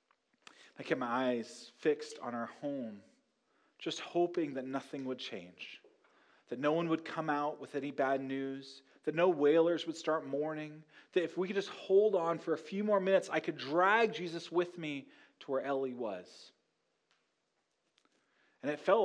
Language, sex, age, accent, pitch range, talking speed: English, male, 30-49, American, 135-175 Hz, 175 wpm